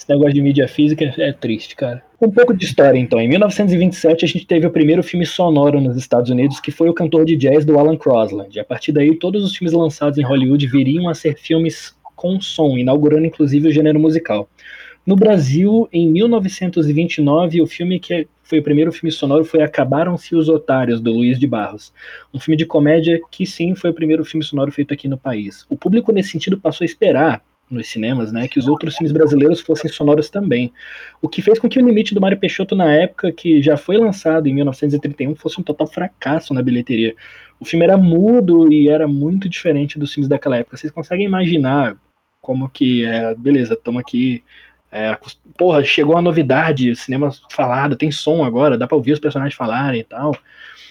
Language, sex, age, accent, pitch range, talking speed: Portuguese, male, 20-39, Brazilian, 140-170 Hz, 200 wpm